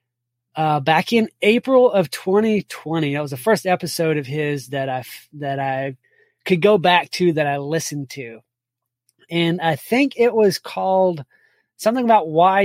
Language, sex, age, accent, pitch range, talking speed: English, male, 20-39, American, 145-190 Hz, 160 wpm